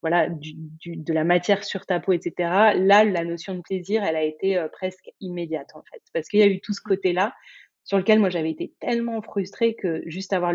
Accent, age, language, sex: French, 30-49, French, female